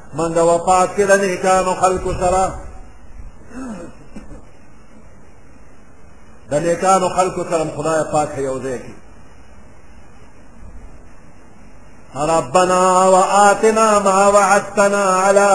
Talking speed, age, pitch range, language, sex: 70 wpm, 50-69, 165-195 Hz, Persian, male